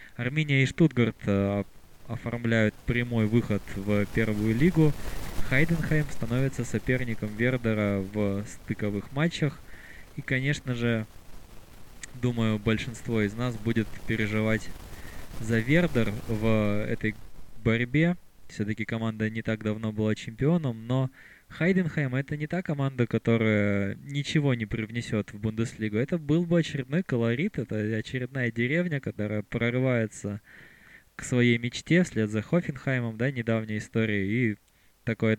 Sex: male